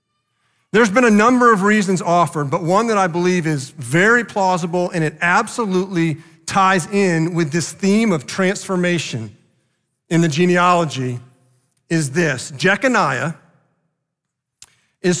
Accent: American